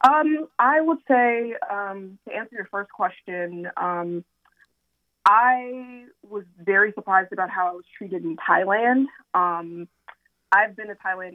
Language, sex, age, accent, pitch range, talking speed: English, female, 20-39, American, 175-225 Hz, 145 wpm